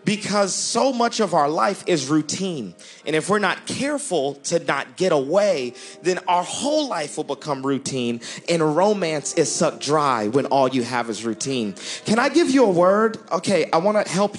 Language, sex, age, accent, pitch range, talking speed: English, male, 40-59, American, 180-255 Hz, 190 wpm